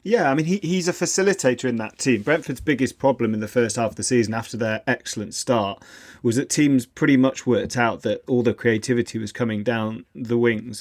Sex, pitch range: male, 115-130 Hz